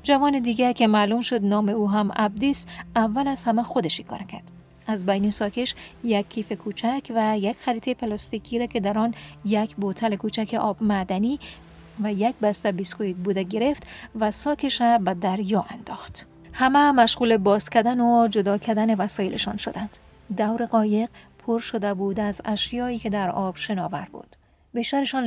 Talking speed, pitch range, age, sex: 160 wpm, 200-235 Hz, 40-59, female